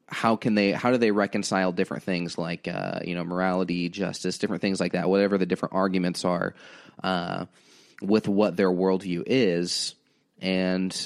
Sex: male